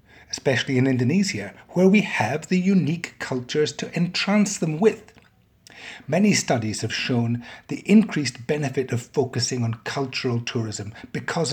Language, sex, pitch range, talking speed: English, male, 120-160 Hz, 135 wpm